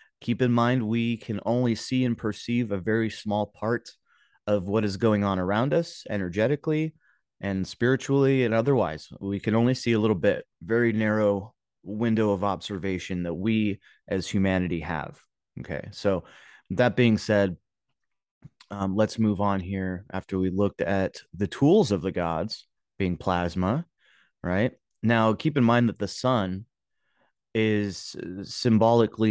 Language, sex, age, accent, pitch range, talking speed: English, male, 30-49, American, 95-120 Hz, 150 wpm